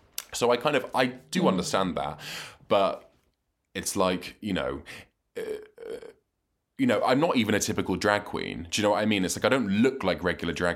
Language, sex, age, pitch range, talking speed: English, male, 20-39, 85-105 Hz, 205 wpm